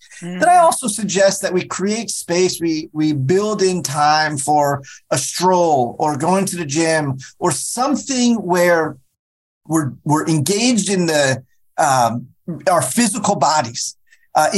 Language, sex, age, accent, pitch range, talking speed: English, male, 30-49, American, 140-190 Hz, 140 wpm